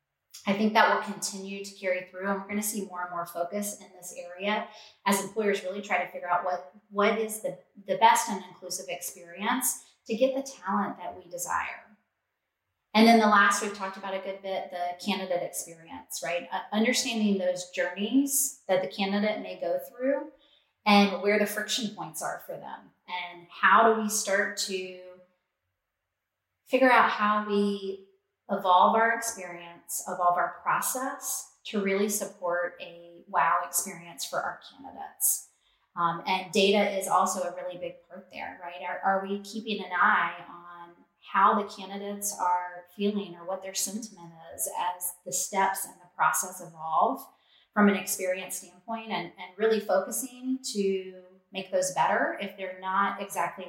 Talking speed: 170 wpm